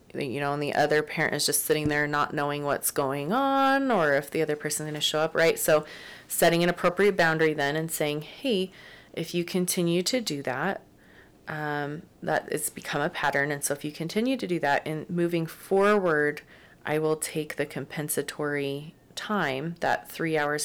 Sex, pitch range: female, 145-180 Hz